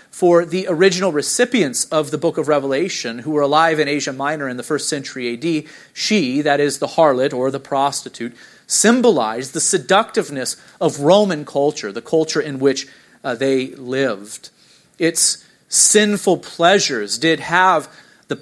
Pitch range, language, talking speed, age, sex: 140-170 Hz, English, 155 wpm, 40-59, male